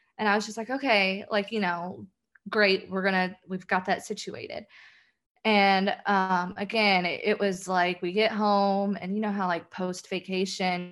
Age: 20-39